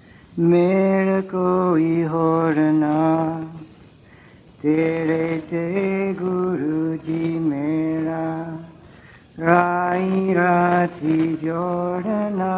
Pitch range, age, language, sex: 160-180 Hz, 60-79, English, male